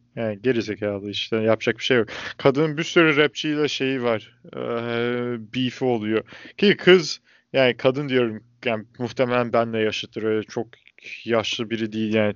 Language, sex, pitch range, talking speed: Turkish, male, 115-145 Hz, 150 wpm